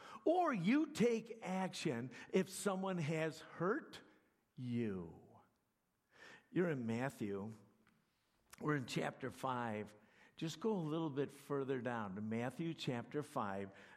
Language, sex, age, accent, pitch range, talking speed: English, male, 60-79, American, 125-170 Hz, 115 wpm